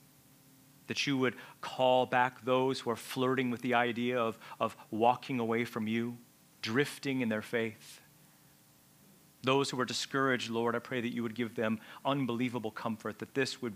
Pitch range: 100-125 Hz